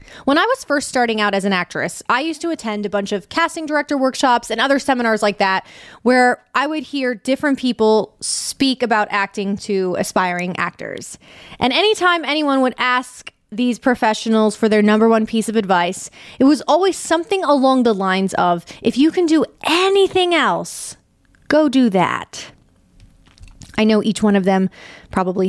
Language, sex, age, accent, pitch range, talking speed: English, female, 20-39, American, 205-285 Hz, 175 wpm